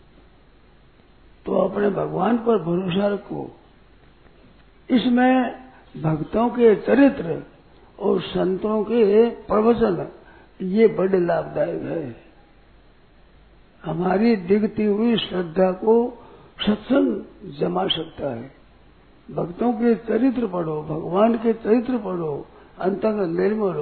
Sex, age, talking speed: male, 60-79, 95 wpm